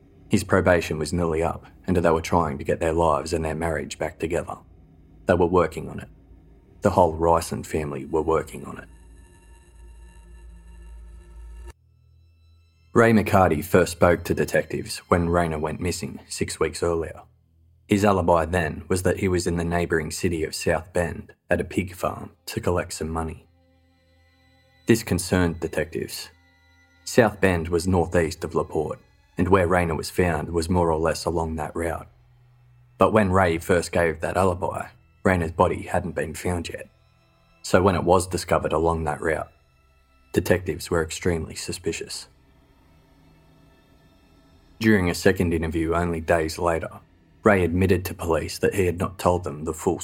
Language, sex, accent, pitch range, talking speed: English, male, Australian, 80-95 Hz, 155 wpm